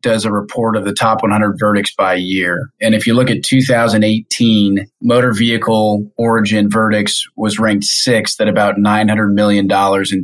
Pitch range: 105-120 Hz